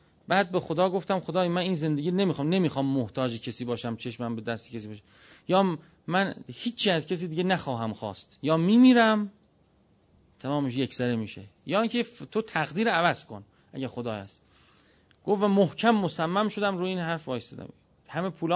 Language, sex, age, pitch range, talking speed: Persian, male, 40-59, 135-185 Hz, 170 wpm